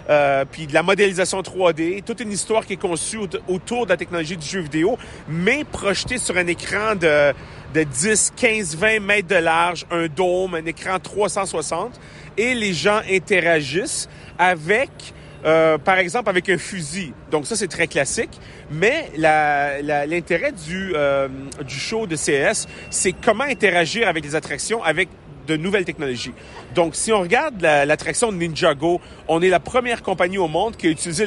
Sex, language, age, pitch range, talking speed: male, French, 40-59, 150-195 Hz, 175 wpm